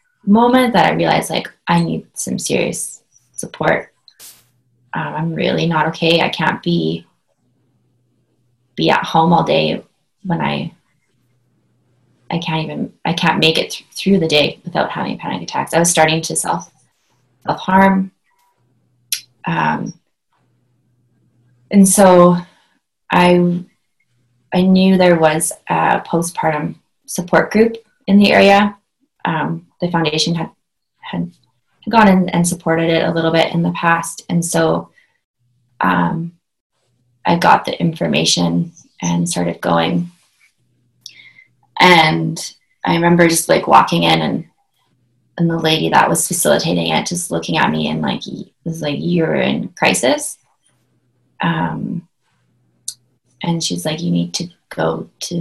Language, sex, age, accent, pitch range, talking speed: English, female, 20-39, American, 120-175 Hz, 130 wpm